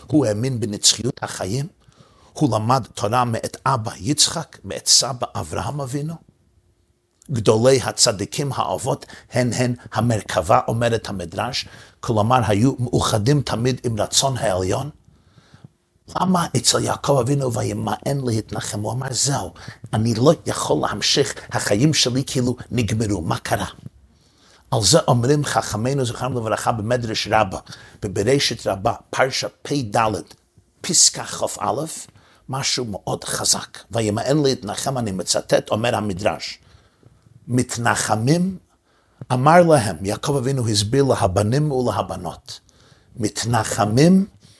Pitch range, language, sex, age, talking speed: 105-135 Hz, Hebrew, male, 50-69, 110 wpm